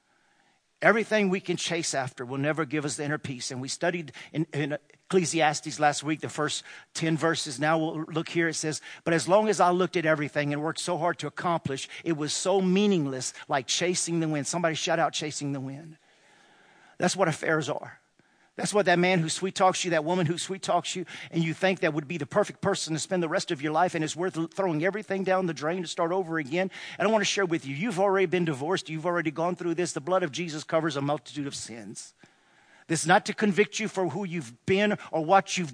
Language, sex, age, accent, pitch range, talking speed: English, male, 50-69, American, 160-195 Hz, 240 wpm